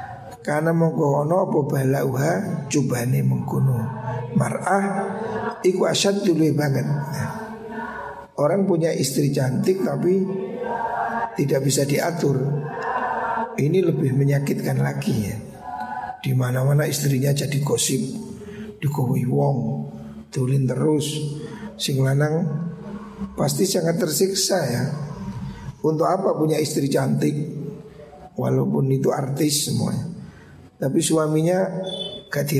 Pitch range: 140-190 Hz